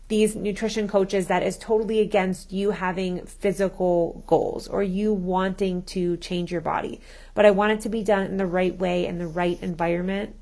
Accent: American